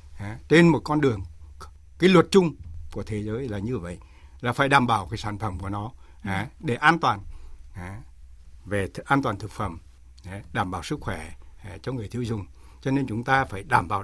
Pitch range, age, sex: 100-135 Hz, 60-79, male